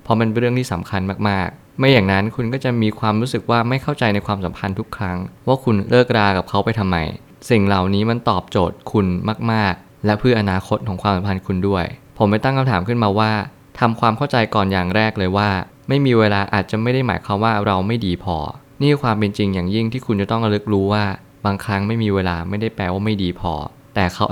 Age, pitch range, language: 20-39, 95-115 Hz, Thai